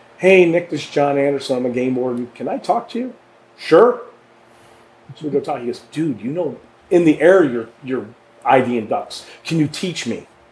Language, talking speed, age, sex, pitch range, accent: English, 205 wpm, 40-59, male, 115-150 Hz, American